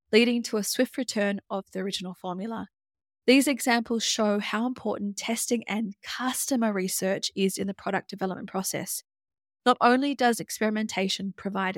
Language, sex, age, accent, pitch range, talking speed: English, female, 10-29, Australian, 195-250 Hz, 150 wpm